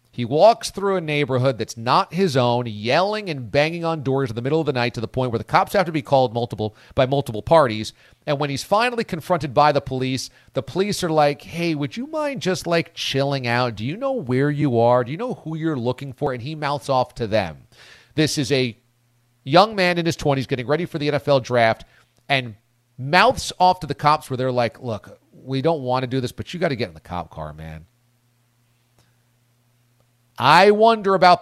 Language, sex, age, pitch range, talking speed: English, male, 40-59, 120-160 Hz, 220 wpm